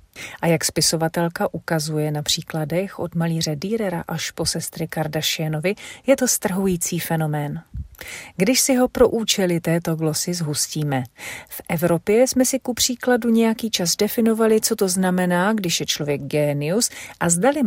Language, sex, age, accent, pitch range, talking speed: Czech, female, 40-59, native, 160-220 Hz, 145 wpm